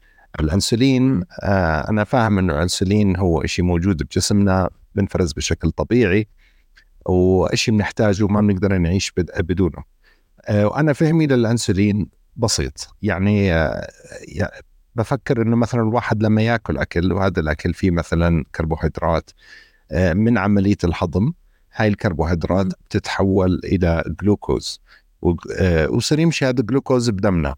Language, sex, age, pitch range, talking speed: Arabic, male, 60-79, 95-120 Hz, 115 wpm